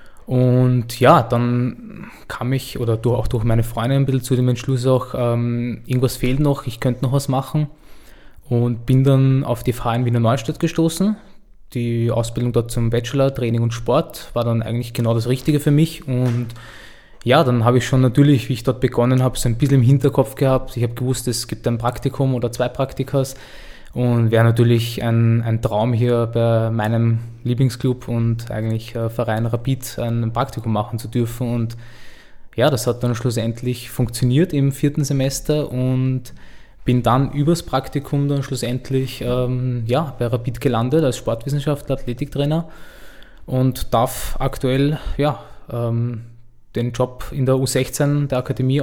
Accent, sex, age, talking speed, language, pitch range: Austrian, male, 20-39, 165 wpm, German, 120-135 Hz